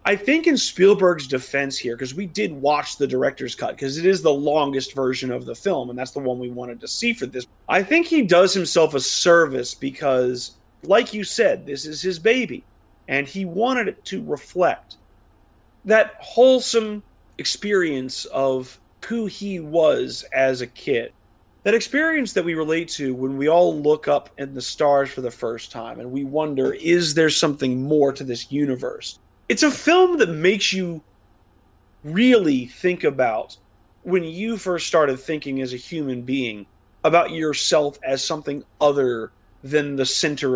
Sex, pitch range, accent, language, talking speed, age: male, 130-185 Hz, American, English, 175 wpm, 30-49